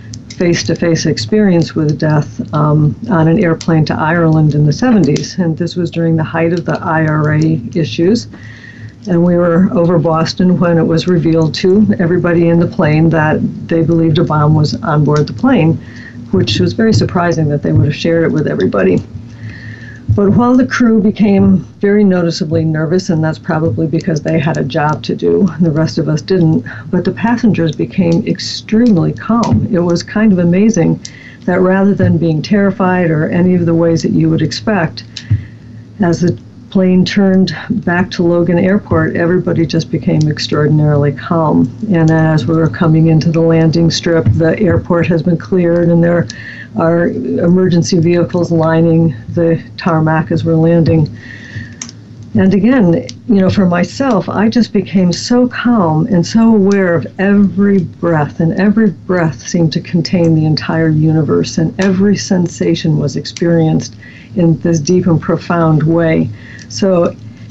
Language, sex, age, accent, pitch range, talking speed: English, female, 60-79, American, 155-180 Hz, 165 wpm